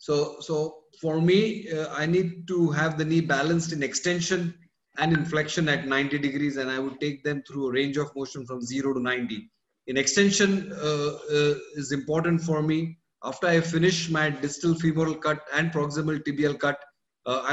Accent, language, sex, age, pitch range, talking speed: Indian, English, male, 30-49, 145-165 Hz, 180 wpm